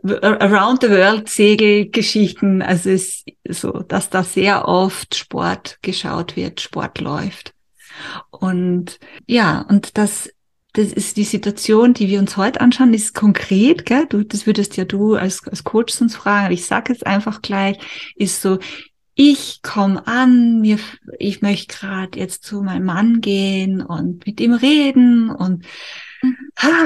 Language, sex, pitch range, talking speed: German, female, 190-235 Hz, 150 wpm